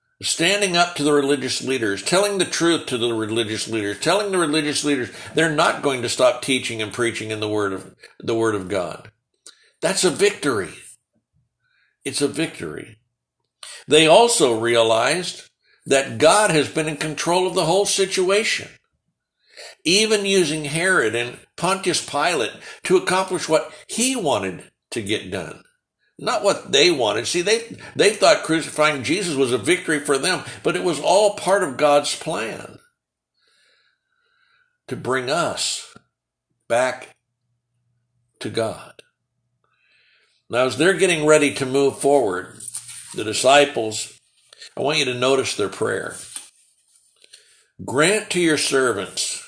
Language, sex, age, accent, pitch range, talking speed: English, male, 60-79, American, 125-190 Hz, 140 wpm